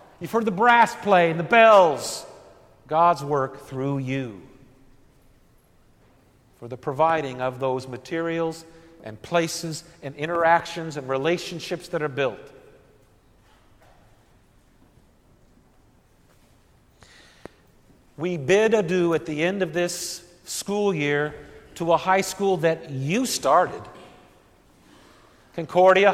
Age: 50-69